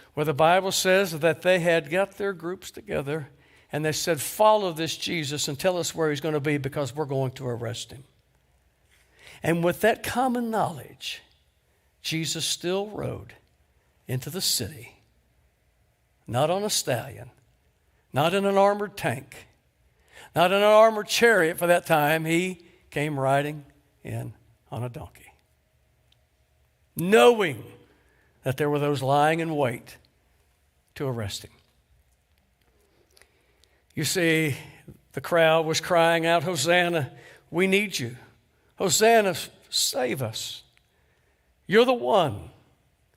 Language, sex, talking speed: English, male, 130 wpm